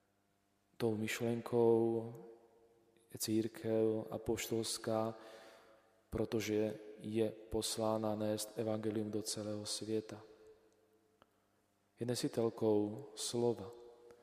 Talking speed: 70 wpm